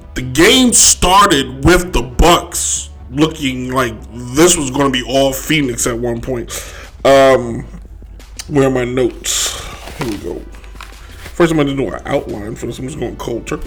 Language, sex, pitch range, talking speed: English, male, 125-160 Hz, 175 wpm